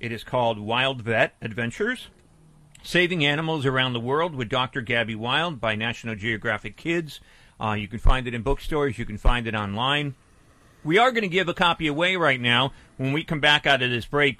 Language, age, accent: English, 40-59, American